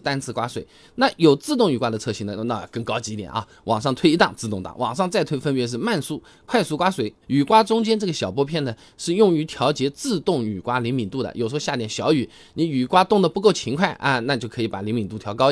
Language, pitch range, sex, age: Chinese, 115-185 Hz, male, 20-39